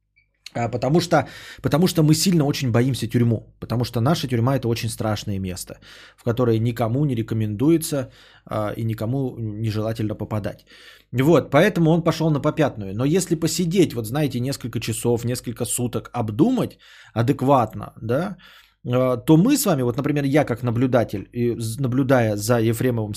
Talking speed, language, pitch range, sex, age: 150 wpm, Bulgarian, 120-160 Hz, male, 20-39